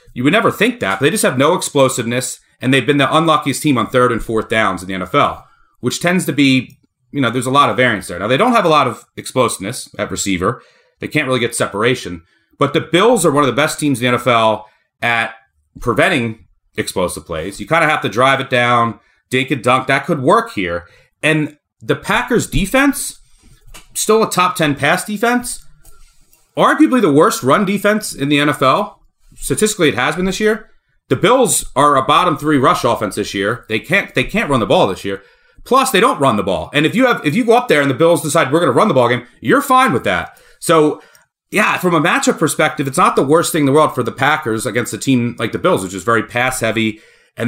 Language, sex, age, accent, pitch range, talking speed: English, male, 30-49, American, 115-155 Hz, 230 wpm